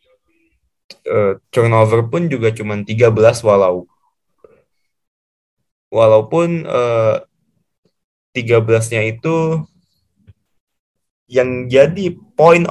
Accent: native